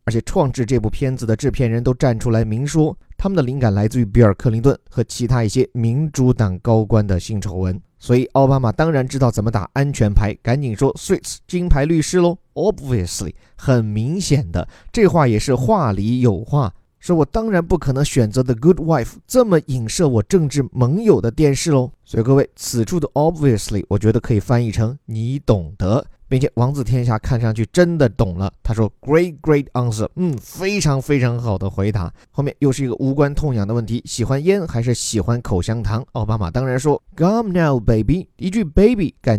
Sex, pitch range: male, 115-150 Hz